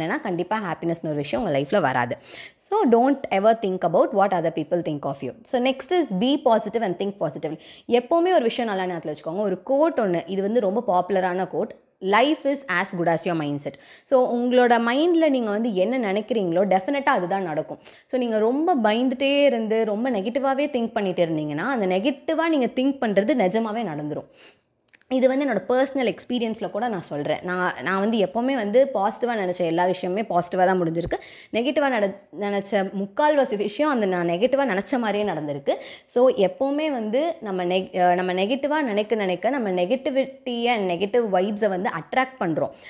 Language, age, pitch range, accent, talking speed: Tamil, 20-39, 180-260 Hz, native, 85 wpm